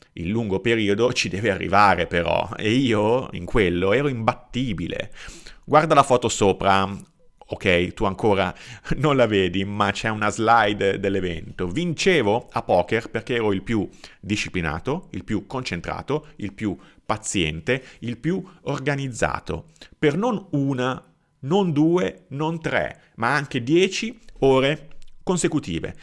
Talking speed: 130 wpm